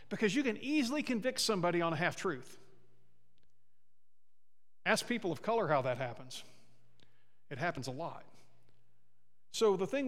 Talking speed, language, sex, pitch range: 135 wpm, English, male, 140-225 Hz